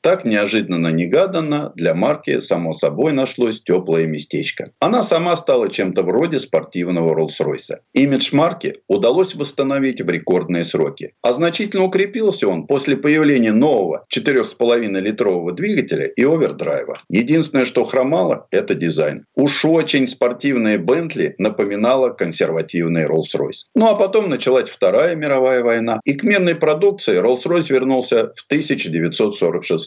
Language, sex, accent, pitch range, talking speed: Russian, male, native, 110-185 Hz, 125 wpm